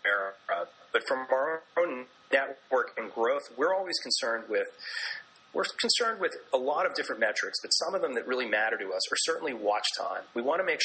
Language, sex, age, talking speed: English, male, 30-49, 205 wpm